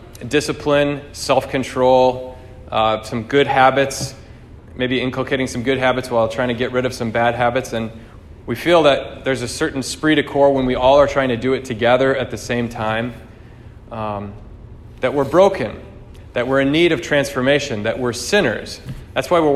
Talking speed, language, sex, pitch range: 185 wpm, English, male, 120-145 Hz